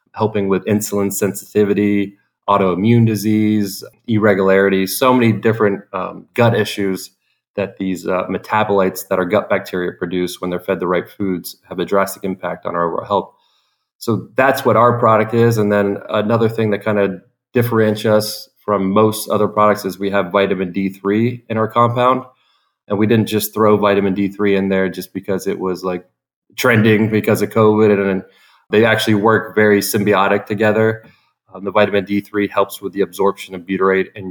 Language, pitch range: English, 95-110 Hz